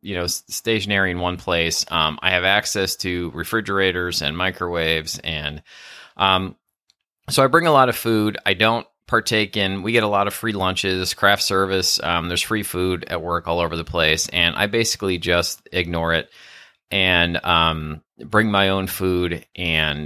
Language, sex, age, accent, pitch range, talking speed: English, male, 30-49, American, 90-115 Hz, 175 wpm